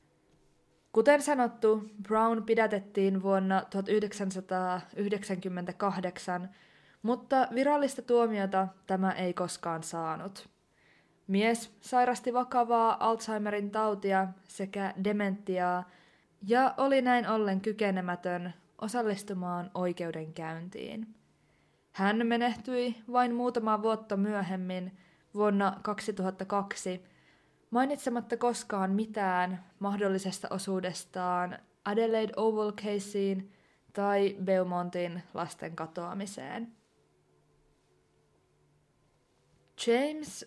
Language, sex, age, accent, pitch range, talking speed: Finnish, female, 20-39, native, 185-225 Hz, 70 wpm